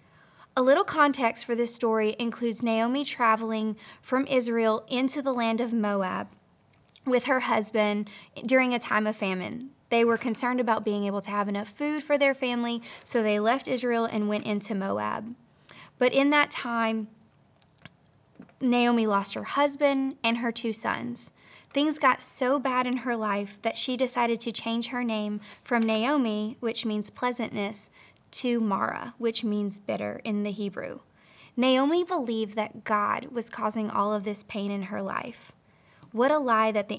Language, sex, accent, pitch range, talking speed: English, female, American, 215-255 Hz, 165 wpm